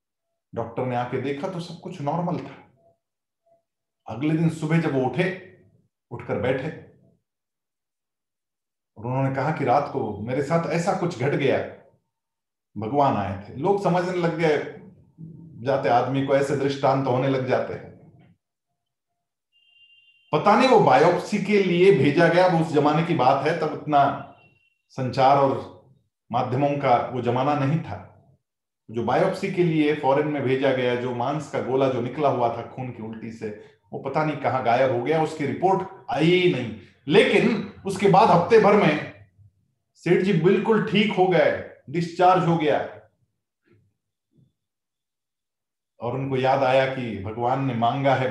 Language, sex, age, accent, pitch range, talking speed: Hindi, male, 40-59, native, 125-170 Hz, 155 wpm